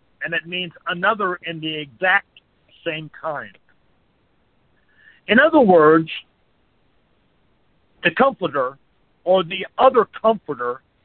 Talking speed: 100 wpm